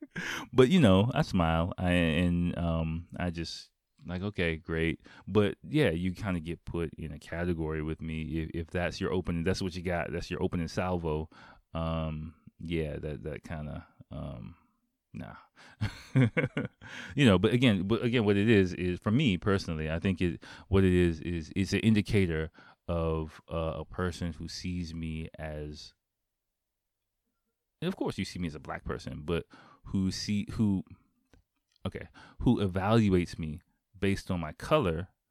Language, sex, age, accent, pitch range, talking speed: English, male, 30-49, American, 85-105 Hz, 165 wpm